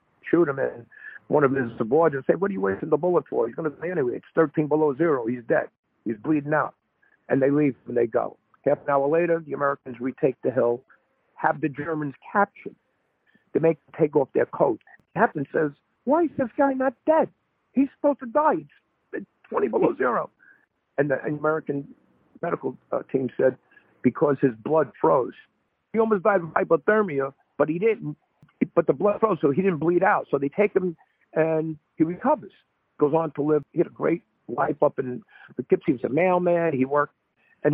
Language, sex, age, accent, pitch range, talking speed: English, male, 50-69, American, 135-175 Hz, 200 wpm